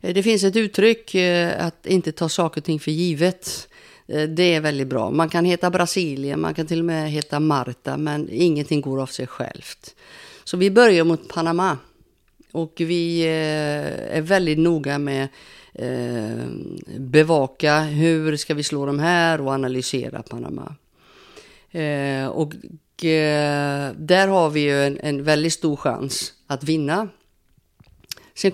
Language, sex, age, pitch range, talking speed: Swedish, female, 50-69, 145-180 Hz, 140 wpm